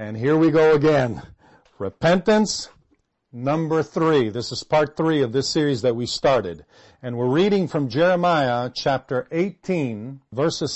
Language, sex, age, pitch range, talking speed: English, male, 50-69, 130-180 Hz, 145 wpm